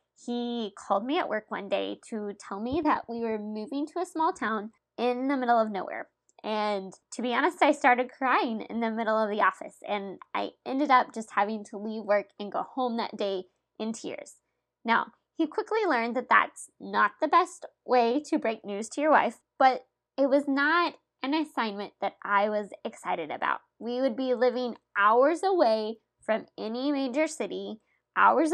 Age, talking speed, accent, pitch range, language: 20-39, 190 wpm, American, 220-295 Hz, English